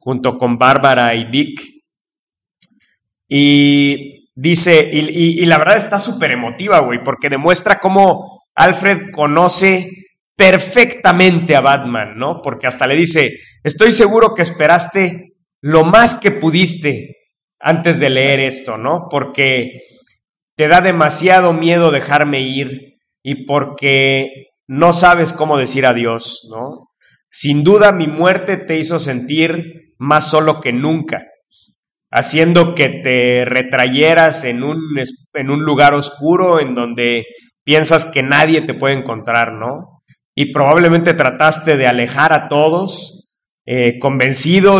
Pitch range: 135-170 Hz